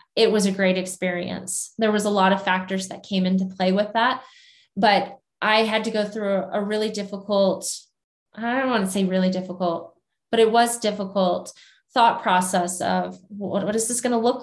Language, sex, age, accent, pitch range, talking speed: English, female, 20-39, American, 190-225 Hz, 190 wpm